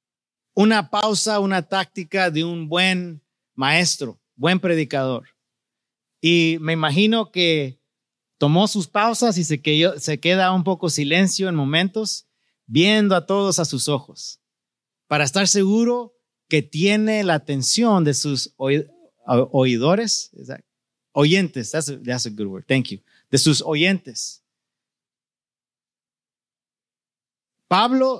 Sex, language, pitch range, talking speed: male, English, 145-195 Hz, 120 wpm